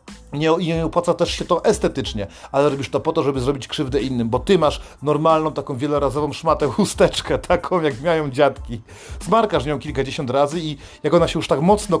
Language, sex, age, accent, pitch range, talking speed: Polish, male, 40-59, native, 140-170 Hz, 190 wpm